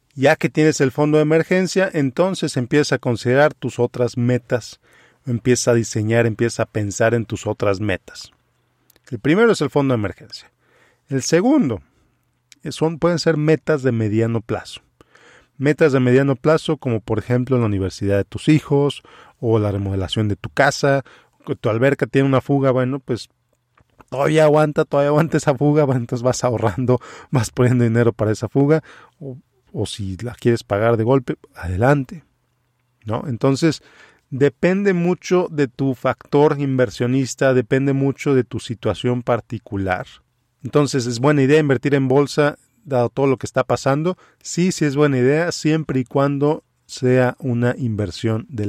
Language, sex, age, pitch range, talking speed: Spanish, male, 40-59, 115-145 Hz, 160 wpm